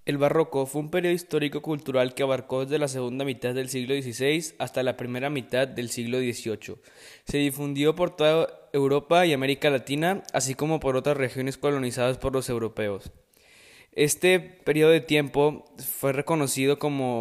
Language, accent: Spanish, Mexican